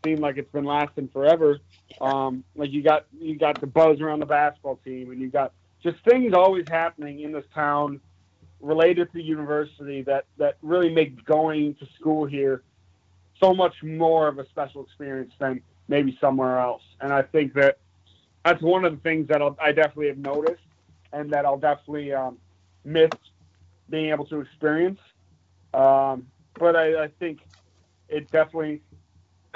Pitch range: 130-155 Hz